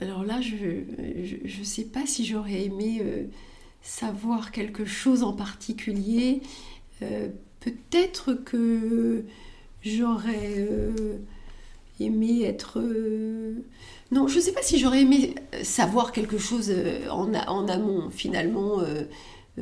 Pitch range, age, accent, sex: 175-240 Hz, 50-69, French, female